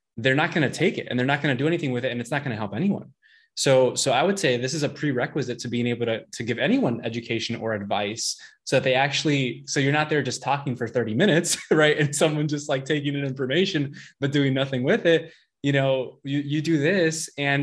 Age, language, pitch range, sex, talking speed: 20-39, English, 130-165 Hz, male, 255 wpm